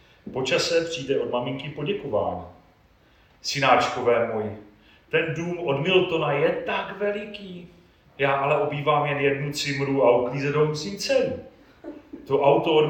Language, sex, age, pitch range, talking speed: Czech, male, 40-59, 110-150 Hz, 125 wpm